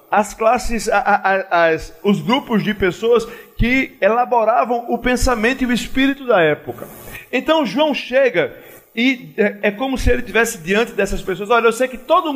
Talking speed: 155 wpm